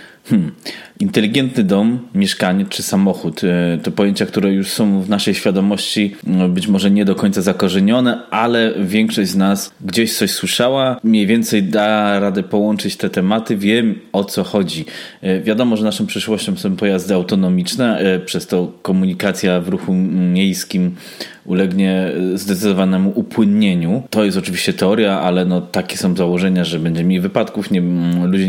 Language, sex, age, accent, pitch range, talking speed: Polish, male, 20-39, native, 90-110 Hz, 140 wpm